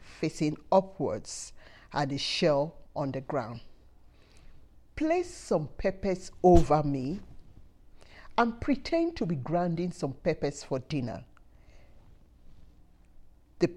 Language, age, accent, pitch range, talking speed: English, 50-69, Nigerian, 135-190 Hz, 100 wpm